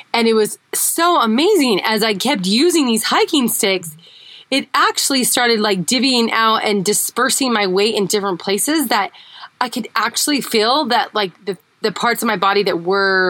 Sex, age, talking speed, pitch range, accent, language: female, 20-39, 180 wpm, 195-245 Hz, American, English